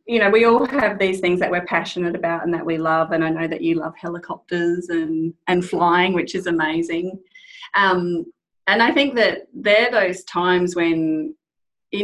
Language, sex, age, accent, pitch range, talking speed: English, female, 30-49, Australian, 165-195 Hz, 190 wpm